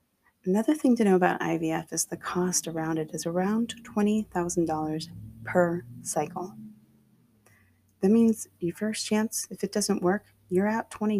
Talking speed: 150 wpm